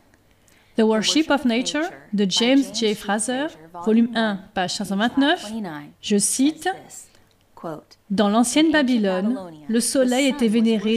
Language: French